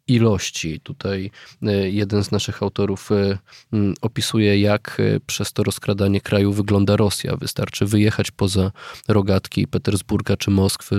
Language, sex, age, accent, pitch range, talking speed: Polish, male, 20-39, native, 100-115 Hz, 115 wpm